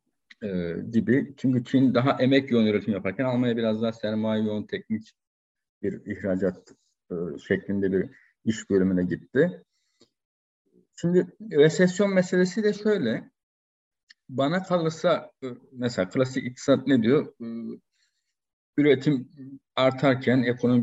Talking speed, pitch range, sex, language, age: 110 wpm, 115-155 Hz, male, Turkish, 50-69